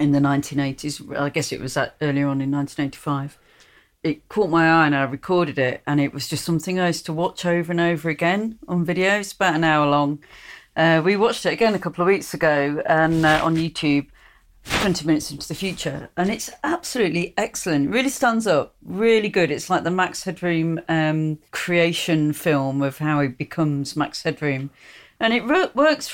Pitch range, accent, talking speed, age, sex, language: 150-185 Hz, British, 195 wpm, 40-59, female, English